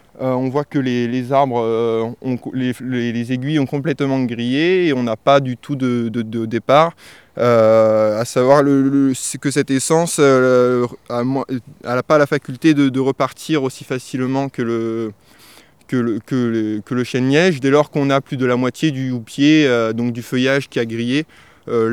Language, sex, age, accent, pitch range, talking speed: French, male, 20-39, French, 125-150 Hz, 200 wpm